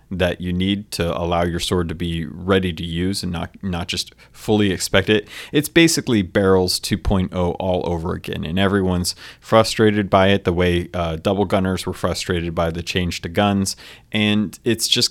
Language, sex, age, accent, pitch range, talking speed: English, male, 30-49, American, 90-105 Hz, 185 wpm